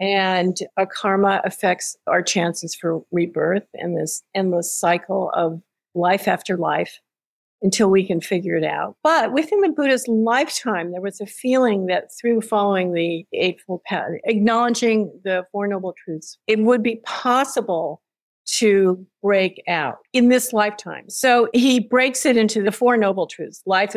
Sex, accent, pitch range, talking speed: female, American, 185-230 Hz, 155 wpm